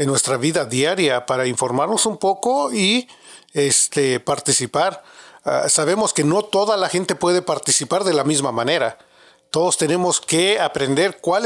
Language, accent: English, Mexican